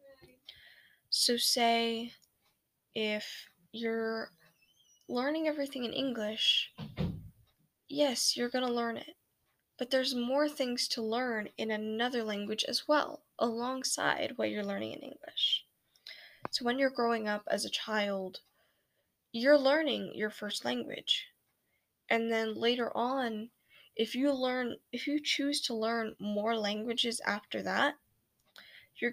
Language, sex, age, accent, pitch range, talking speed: English, female, 10-29, American, 220-265 Hz, 125 wpm